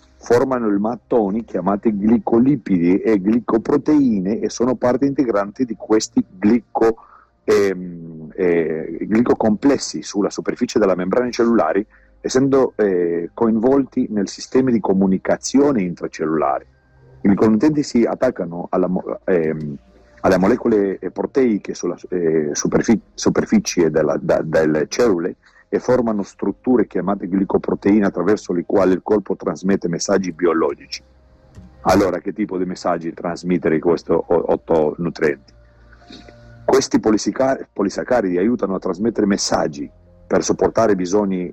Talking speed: 115 wpm